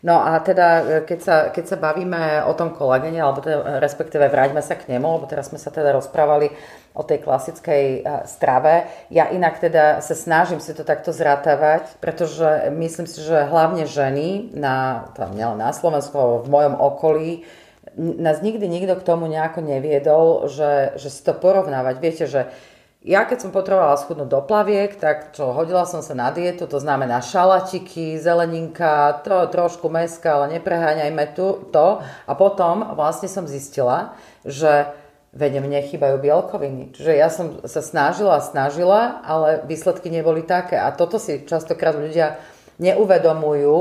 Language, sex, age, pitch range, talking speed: Slovak, female, 30-49, 145-175 Hz, 155 wpm